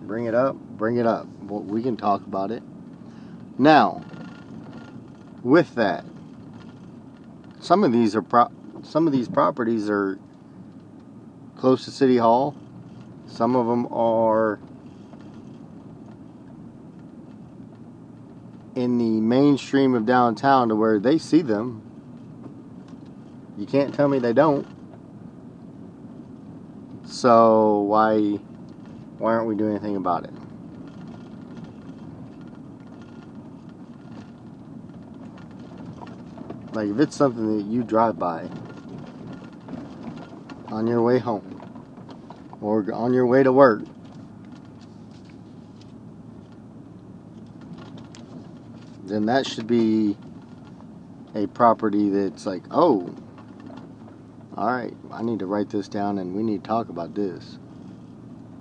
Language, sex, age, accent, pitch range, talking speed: English, male, 30-49, American, 105-120 Hz, 100 wpm